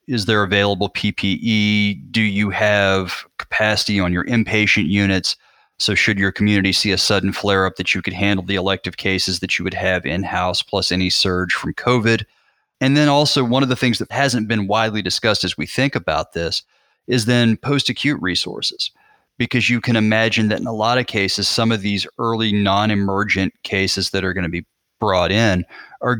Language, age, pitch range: English, 30-49, 95-110 Hz